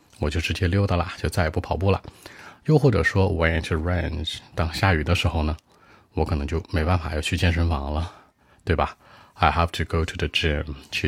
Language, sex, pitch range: Chinese, male, 80-100 Hz